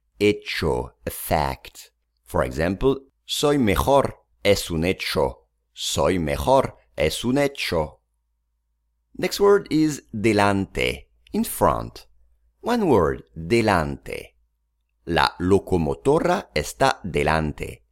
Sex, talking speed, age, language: male, 95 wpm, 50-69, English